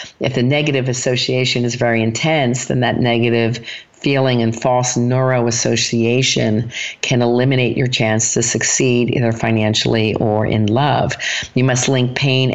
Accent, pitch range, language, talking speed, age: American, 115-135 Hz, English, 140 wpm, 50-69